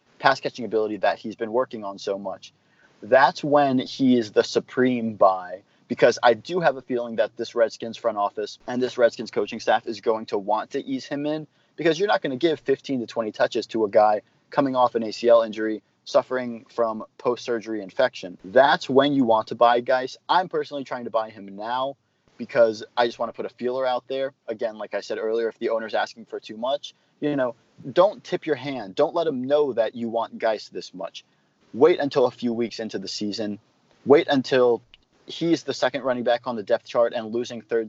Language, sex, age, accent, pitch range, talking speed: English, male, 30-49, American, 115-135 Hz, 215 wpm